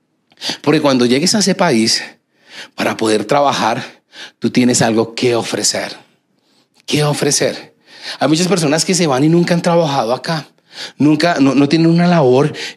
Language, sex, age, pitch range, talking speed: Spanish, male, 40-59, 130-170 Hz, 155 wpm